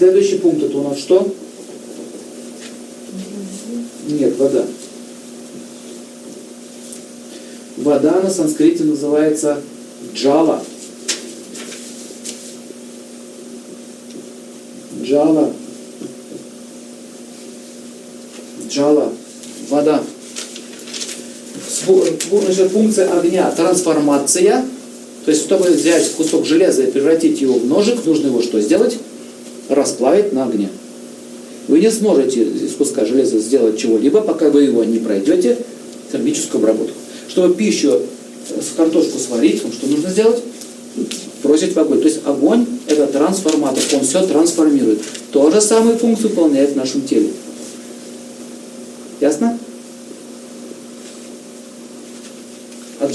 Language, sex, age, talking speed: Russian, male, 50-69, 90 wpm